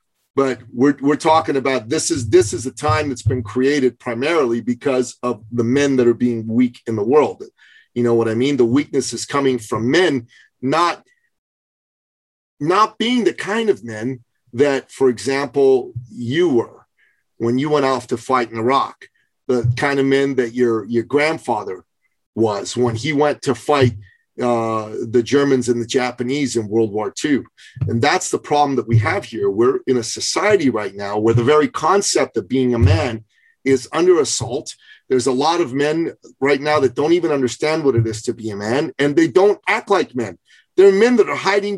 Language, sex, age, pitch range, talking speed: English, male, 40-59, 120-170 Hz, 195 wpm